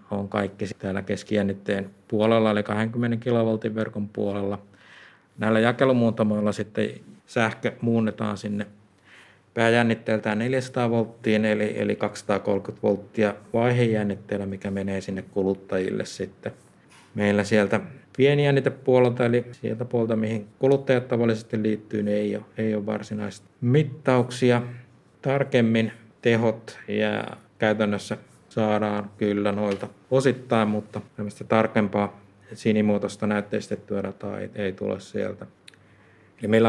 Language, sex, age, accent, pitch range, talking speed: Finnish, male, 50-69, native, 105-115 Hz, 105 wpm